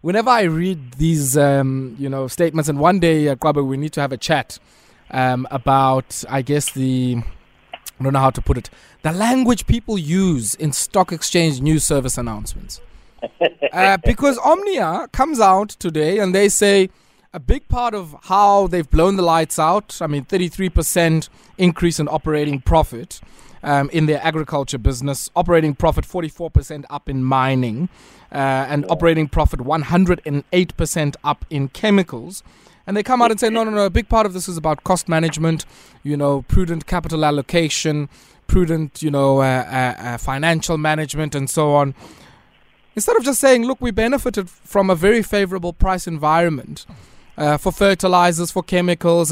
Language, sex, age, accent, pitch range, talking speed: English, male, 20-39, South African, 140-185 Hz, 165 wpm